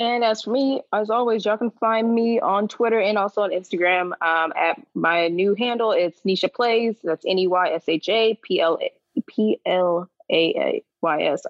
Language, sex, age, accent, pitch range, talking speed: English, female, 20-39, American, 170-230 Hz, 135 wpm